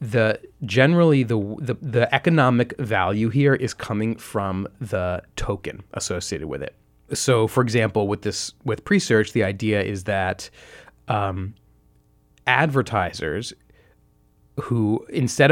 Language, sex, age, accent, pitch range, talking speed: English, male, 30-49, American, 100-125 Hz, 120 wpm